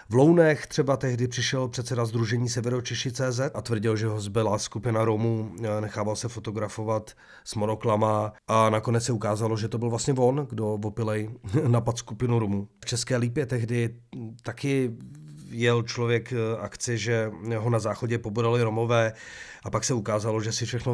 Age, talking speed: 40-59, 160 wpm